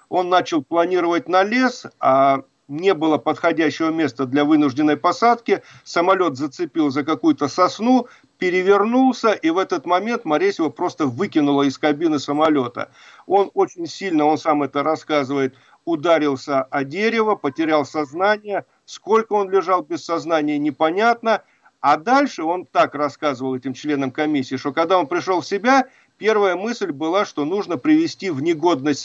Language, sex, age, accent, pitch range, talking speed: Russian, male, 40-59, native, 155-235 Hz, 145 wpm